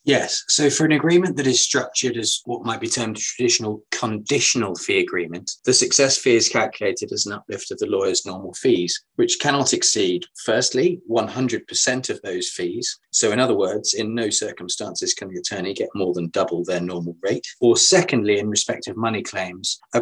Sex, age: male, 20-39